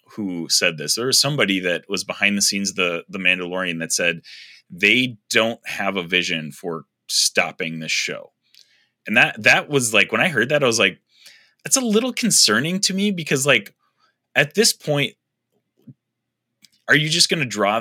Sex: male